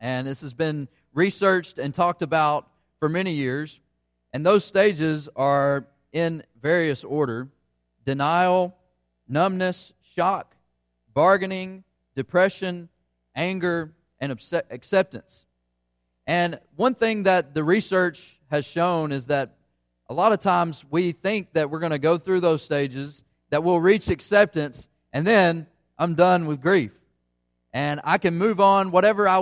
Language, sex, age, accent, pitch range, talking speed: English, male, 30-49, American, 125-180 Hz, 135 wpm